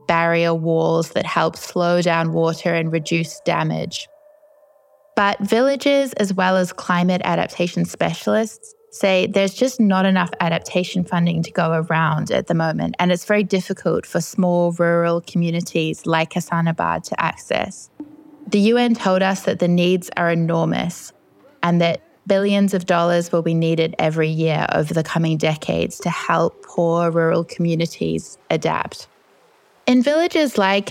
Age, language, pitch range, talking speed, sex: 20-39, English, 165-200 Hz, 145 wpm, female